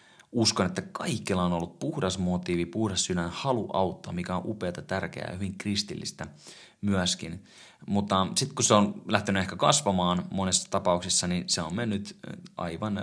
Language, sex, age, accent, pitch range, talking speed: Finnish, male, 30-49, native, 90-105 Hz, 155 wpm